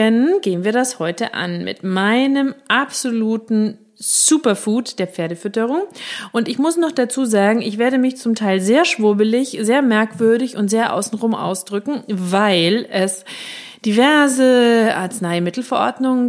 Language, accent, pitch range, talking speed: German, German, 190-250 Hz, 125 wpm